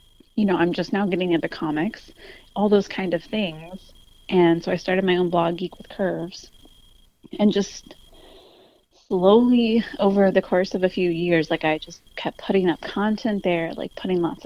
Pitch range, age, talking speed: 165-200 Hz, 30-49, 185 wpm